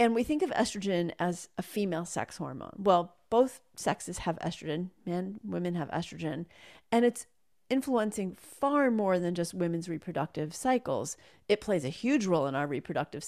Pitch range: 170-215 Hz